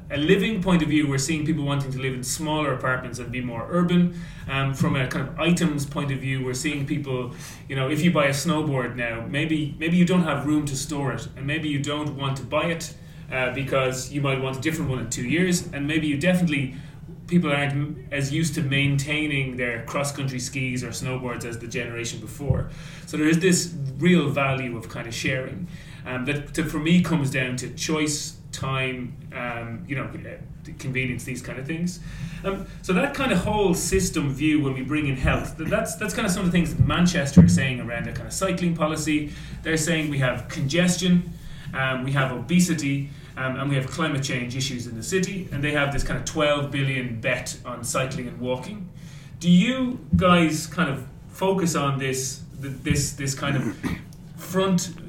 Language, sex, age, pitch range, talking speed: English, male, 30-49, 135-160 Hz, 205 wpm